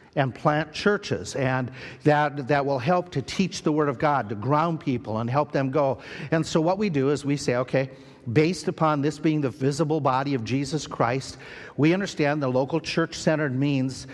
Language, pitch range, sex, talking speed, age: English, 130-160 Hz, male, 195 wpm, 50-69